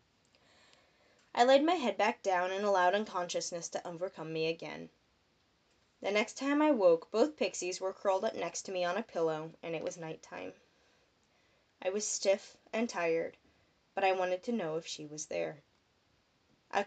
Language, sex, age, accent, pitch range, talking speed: English, female, 10-29, American, 175-215 Hz, 170 wpm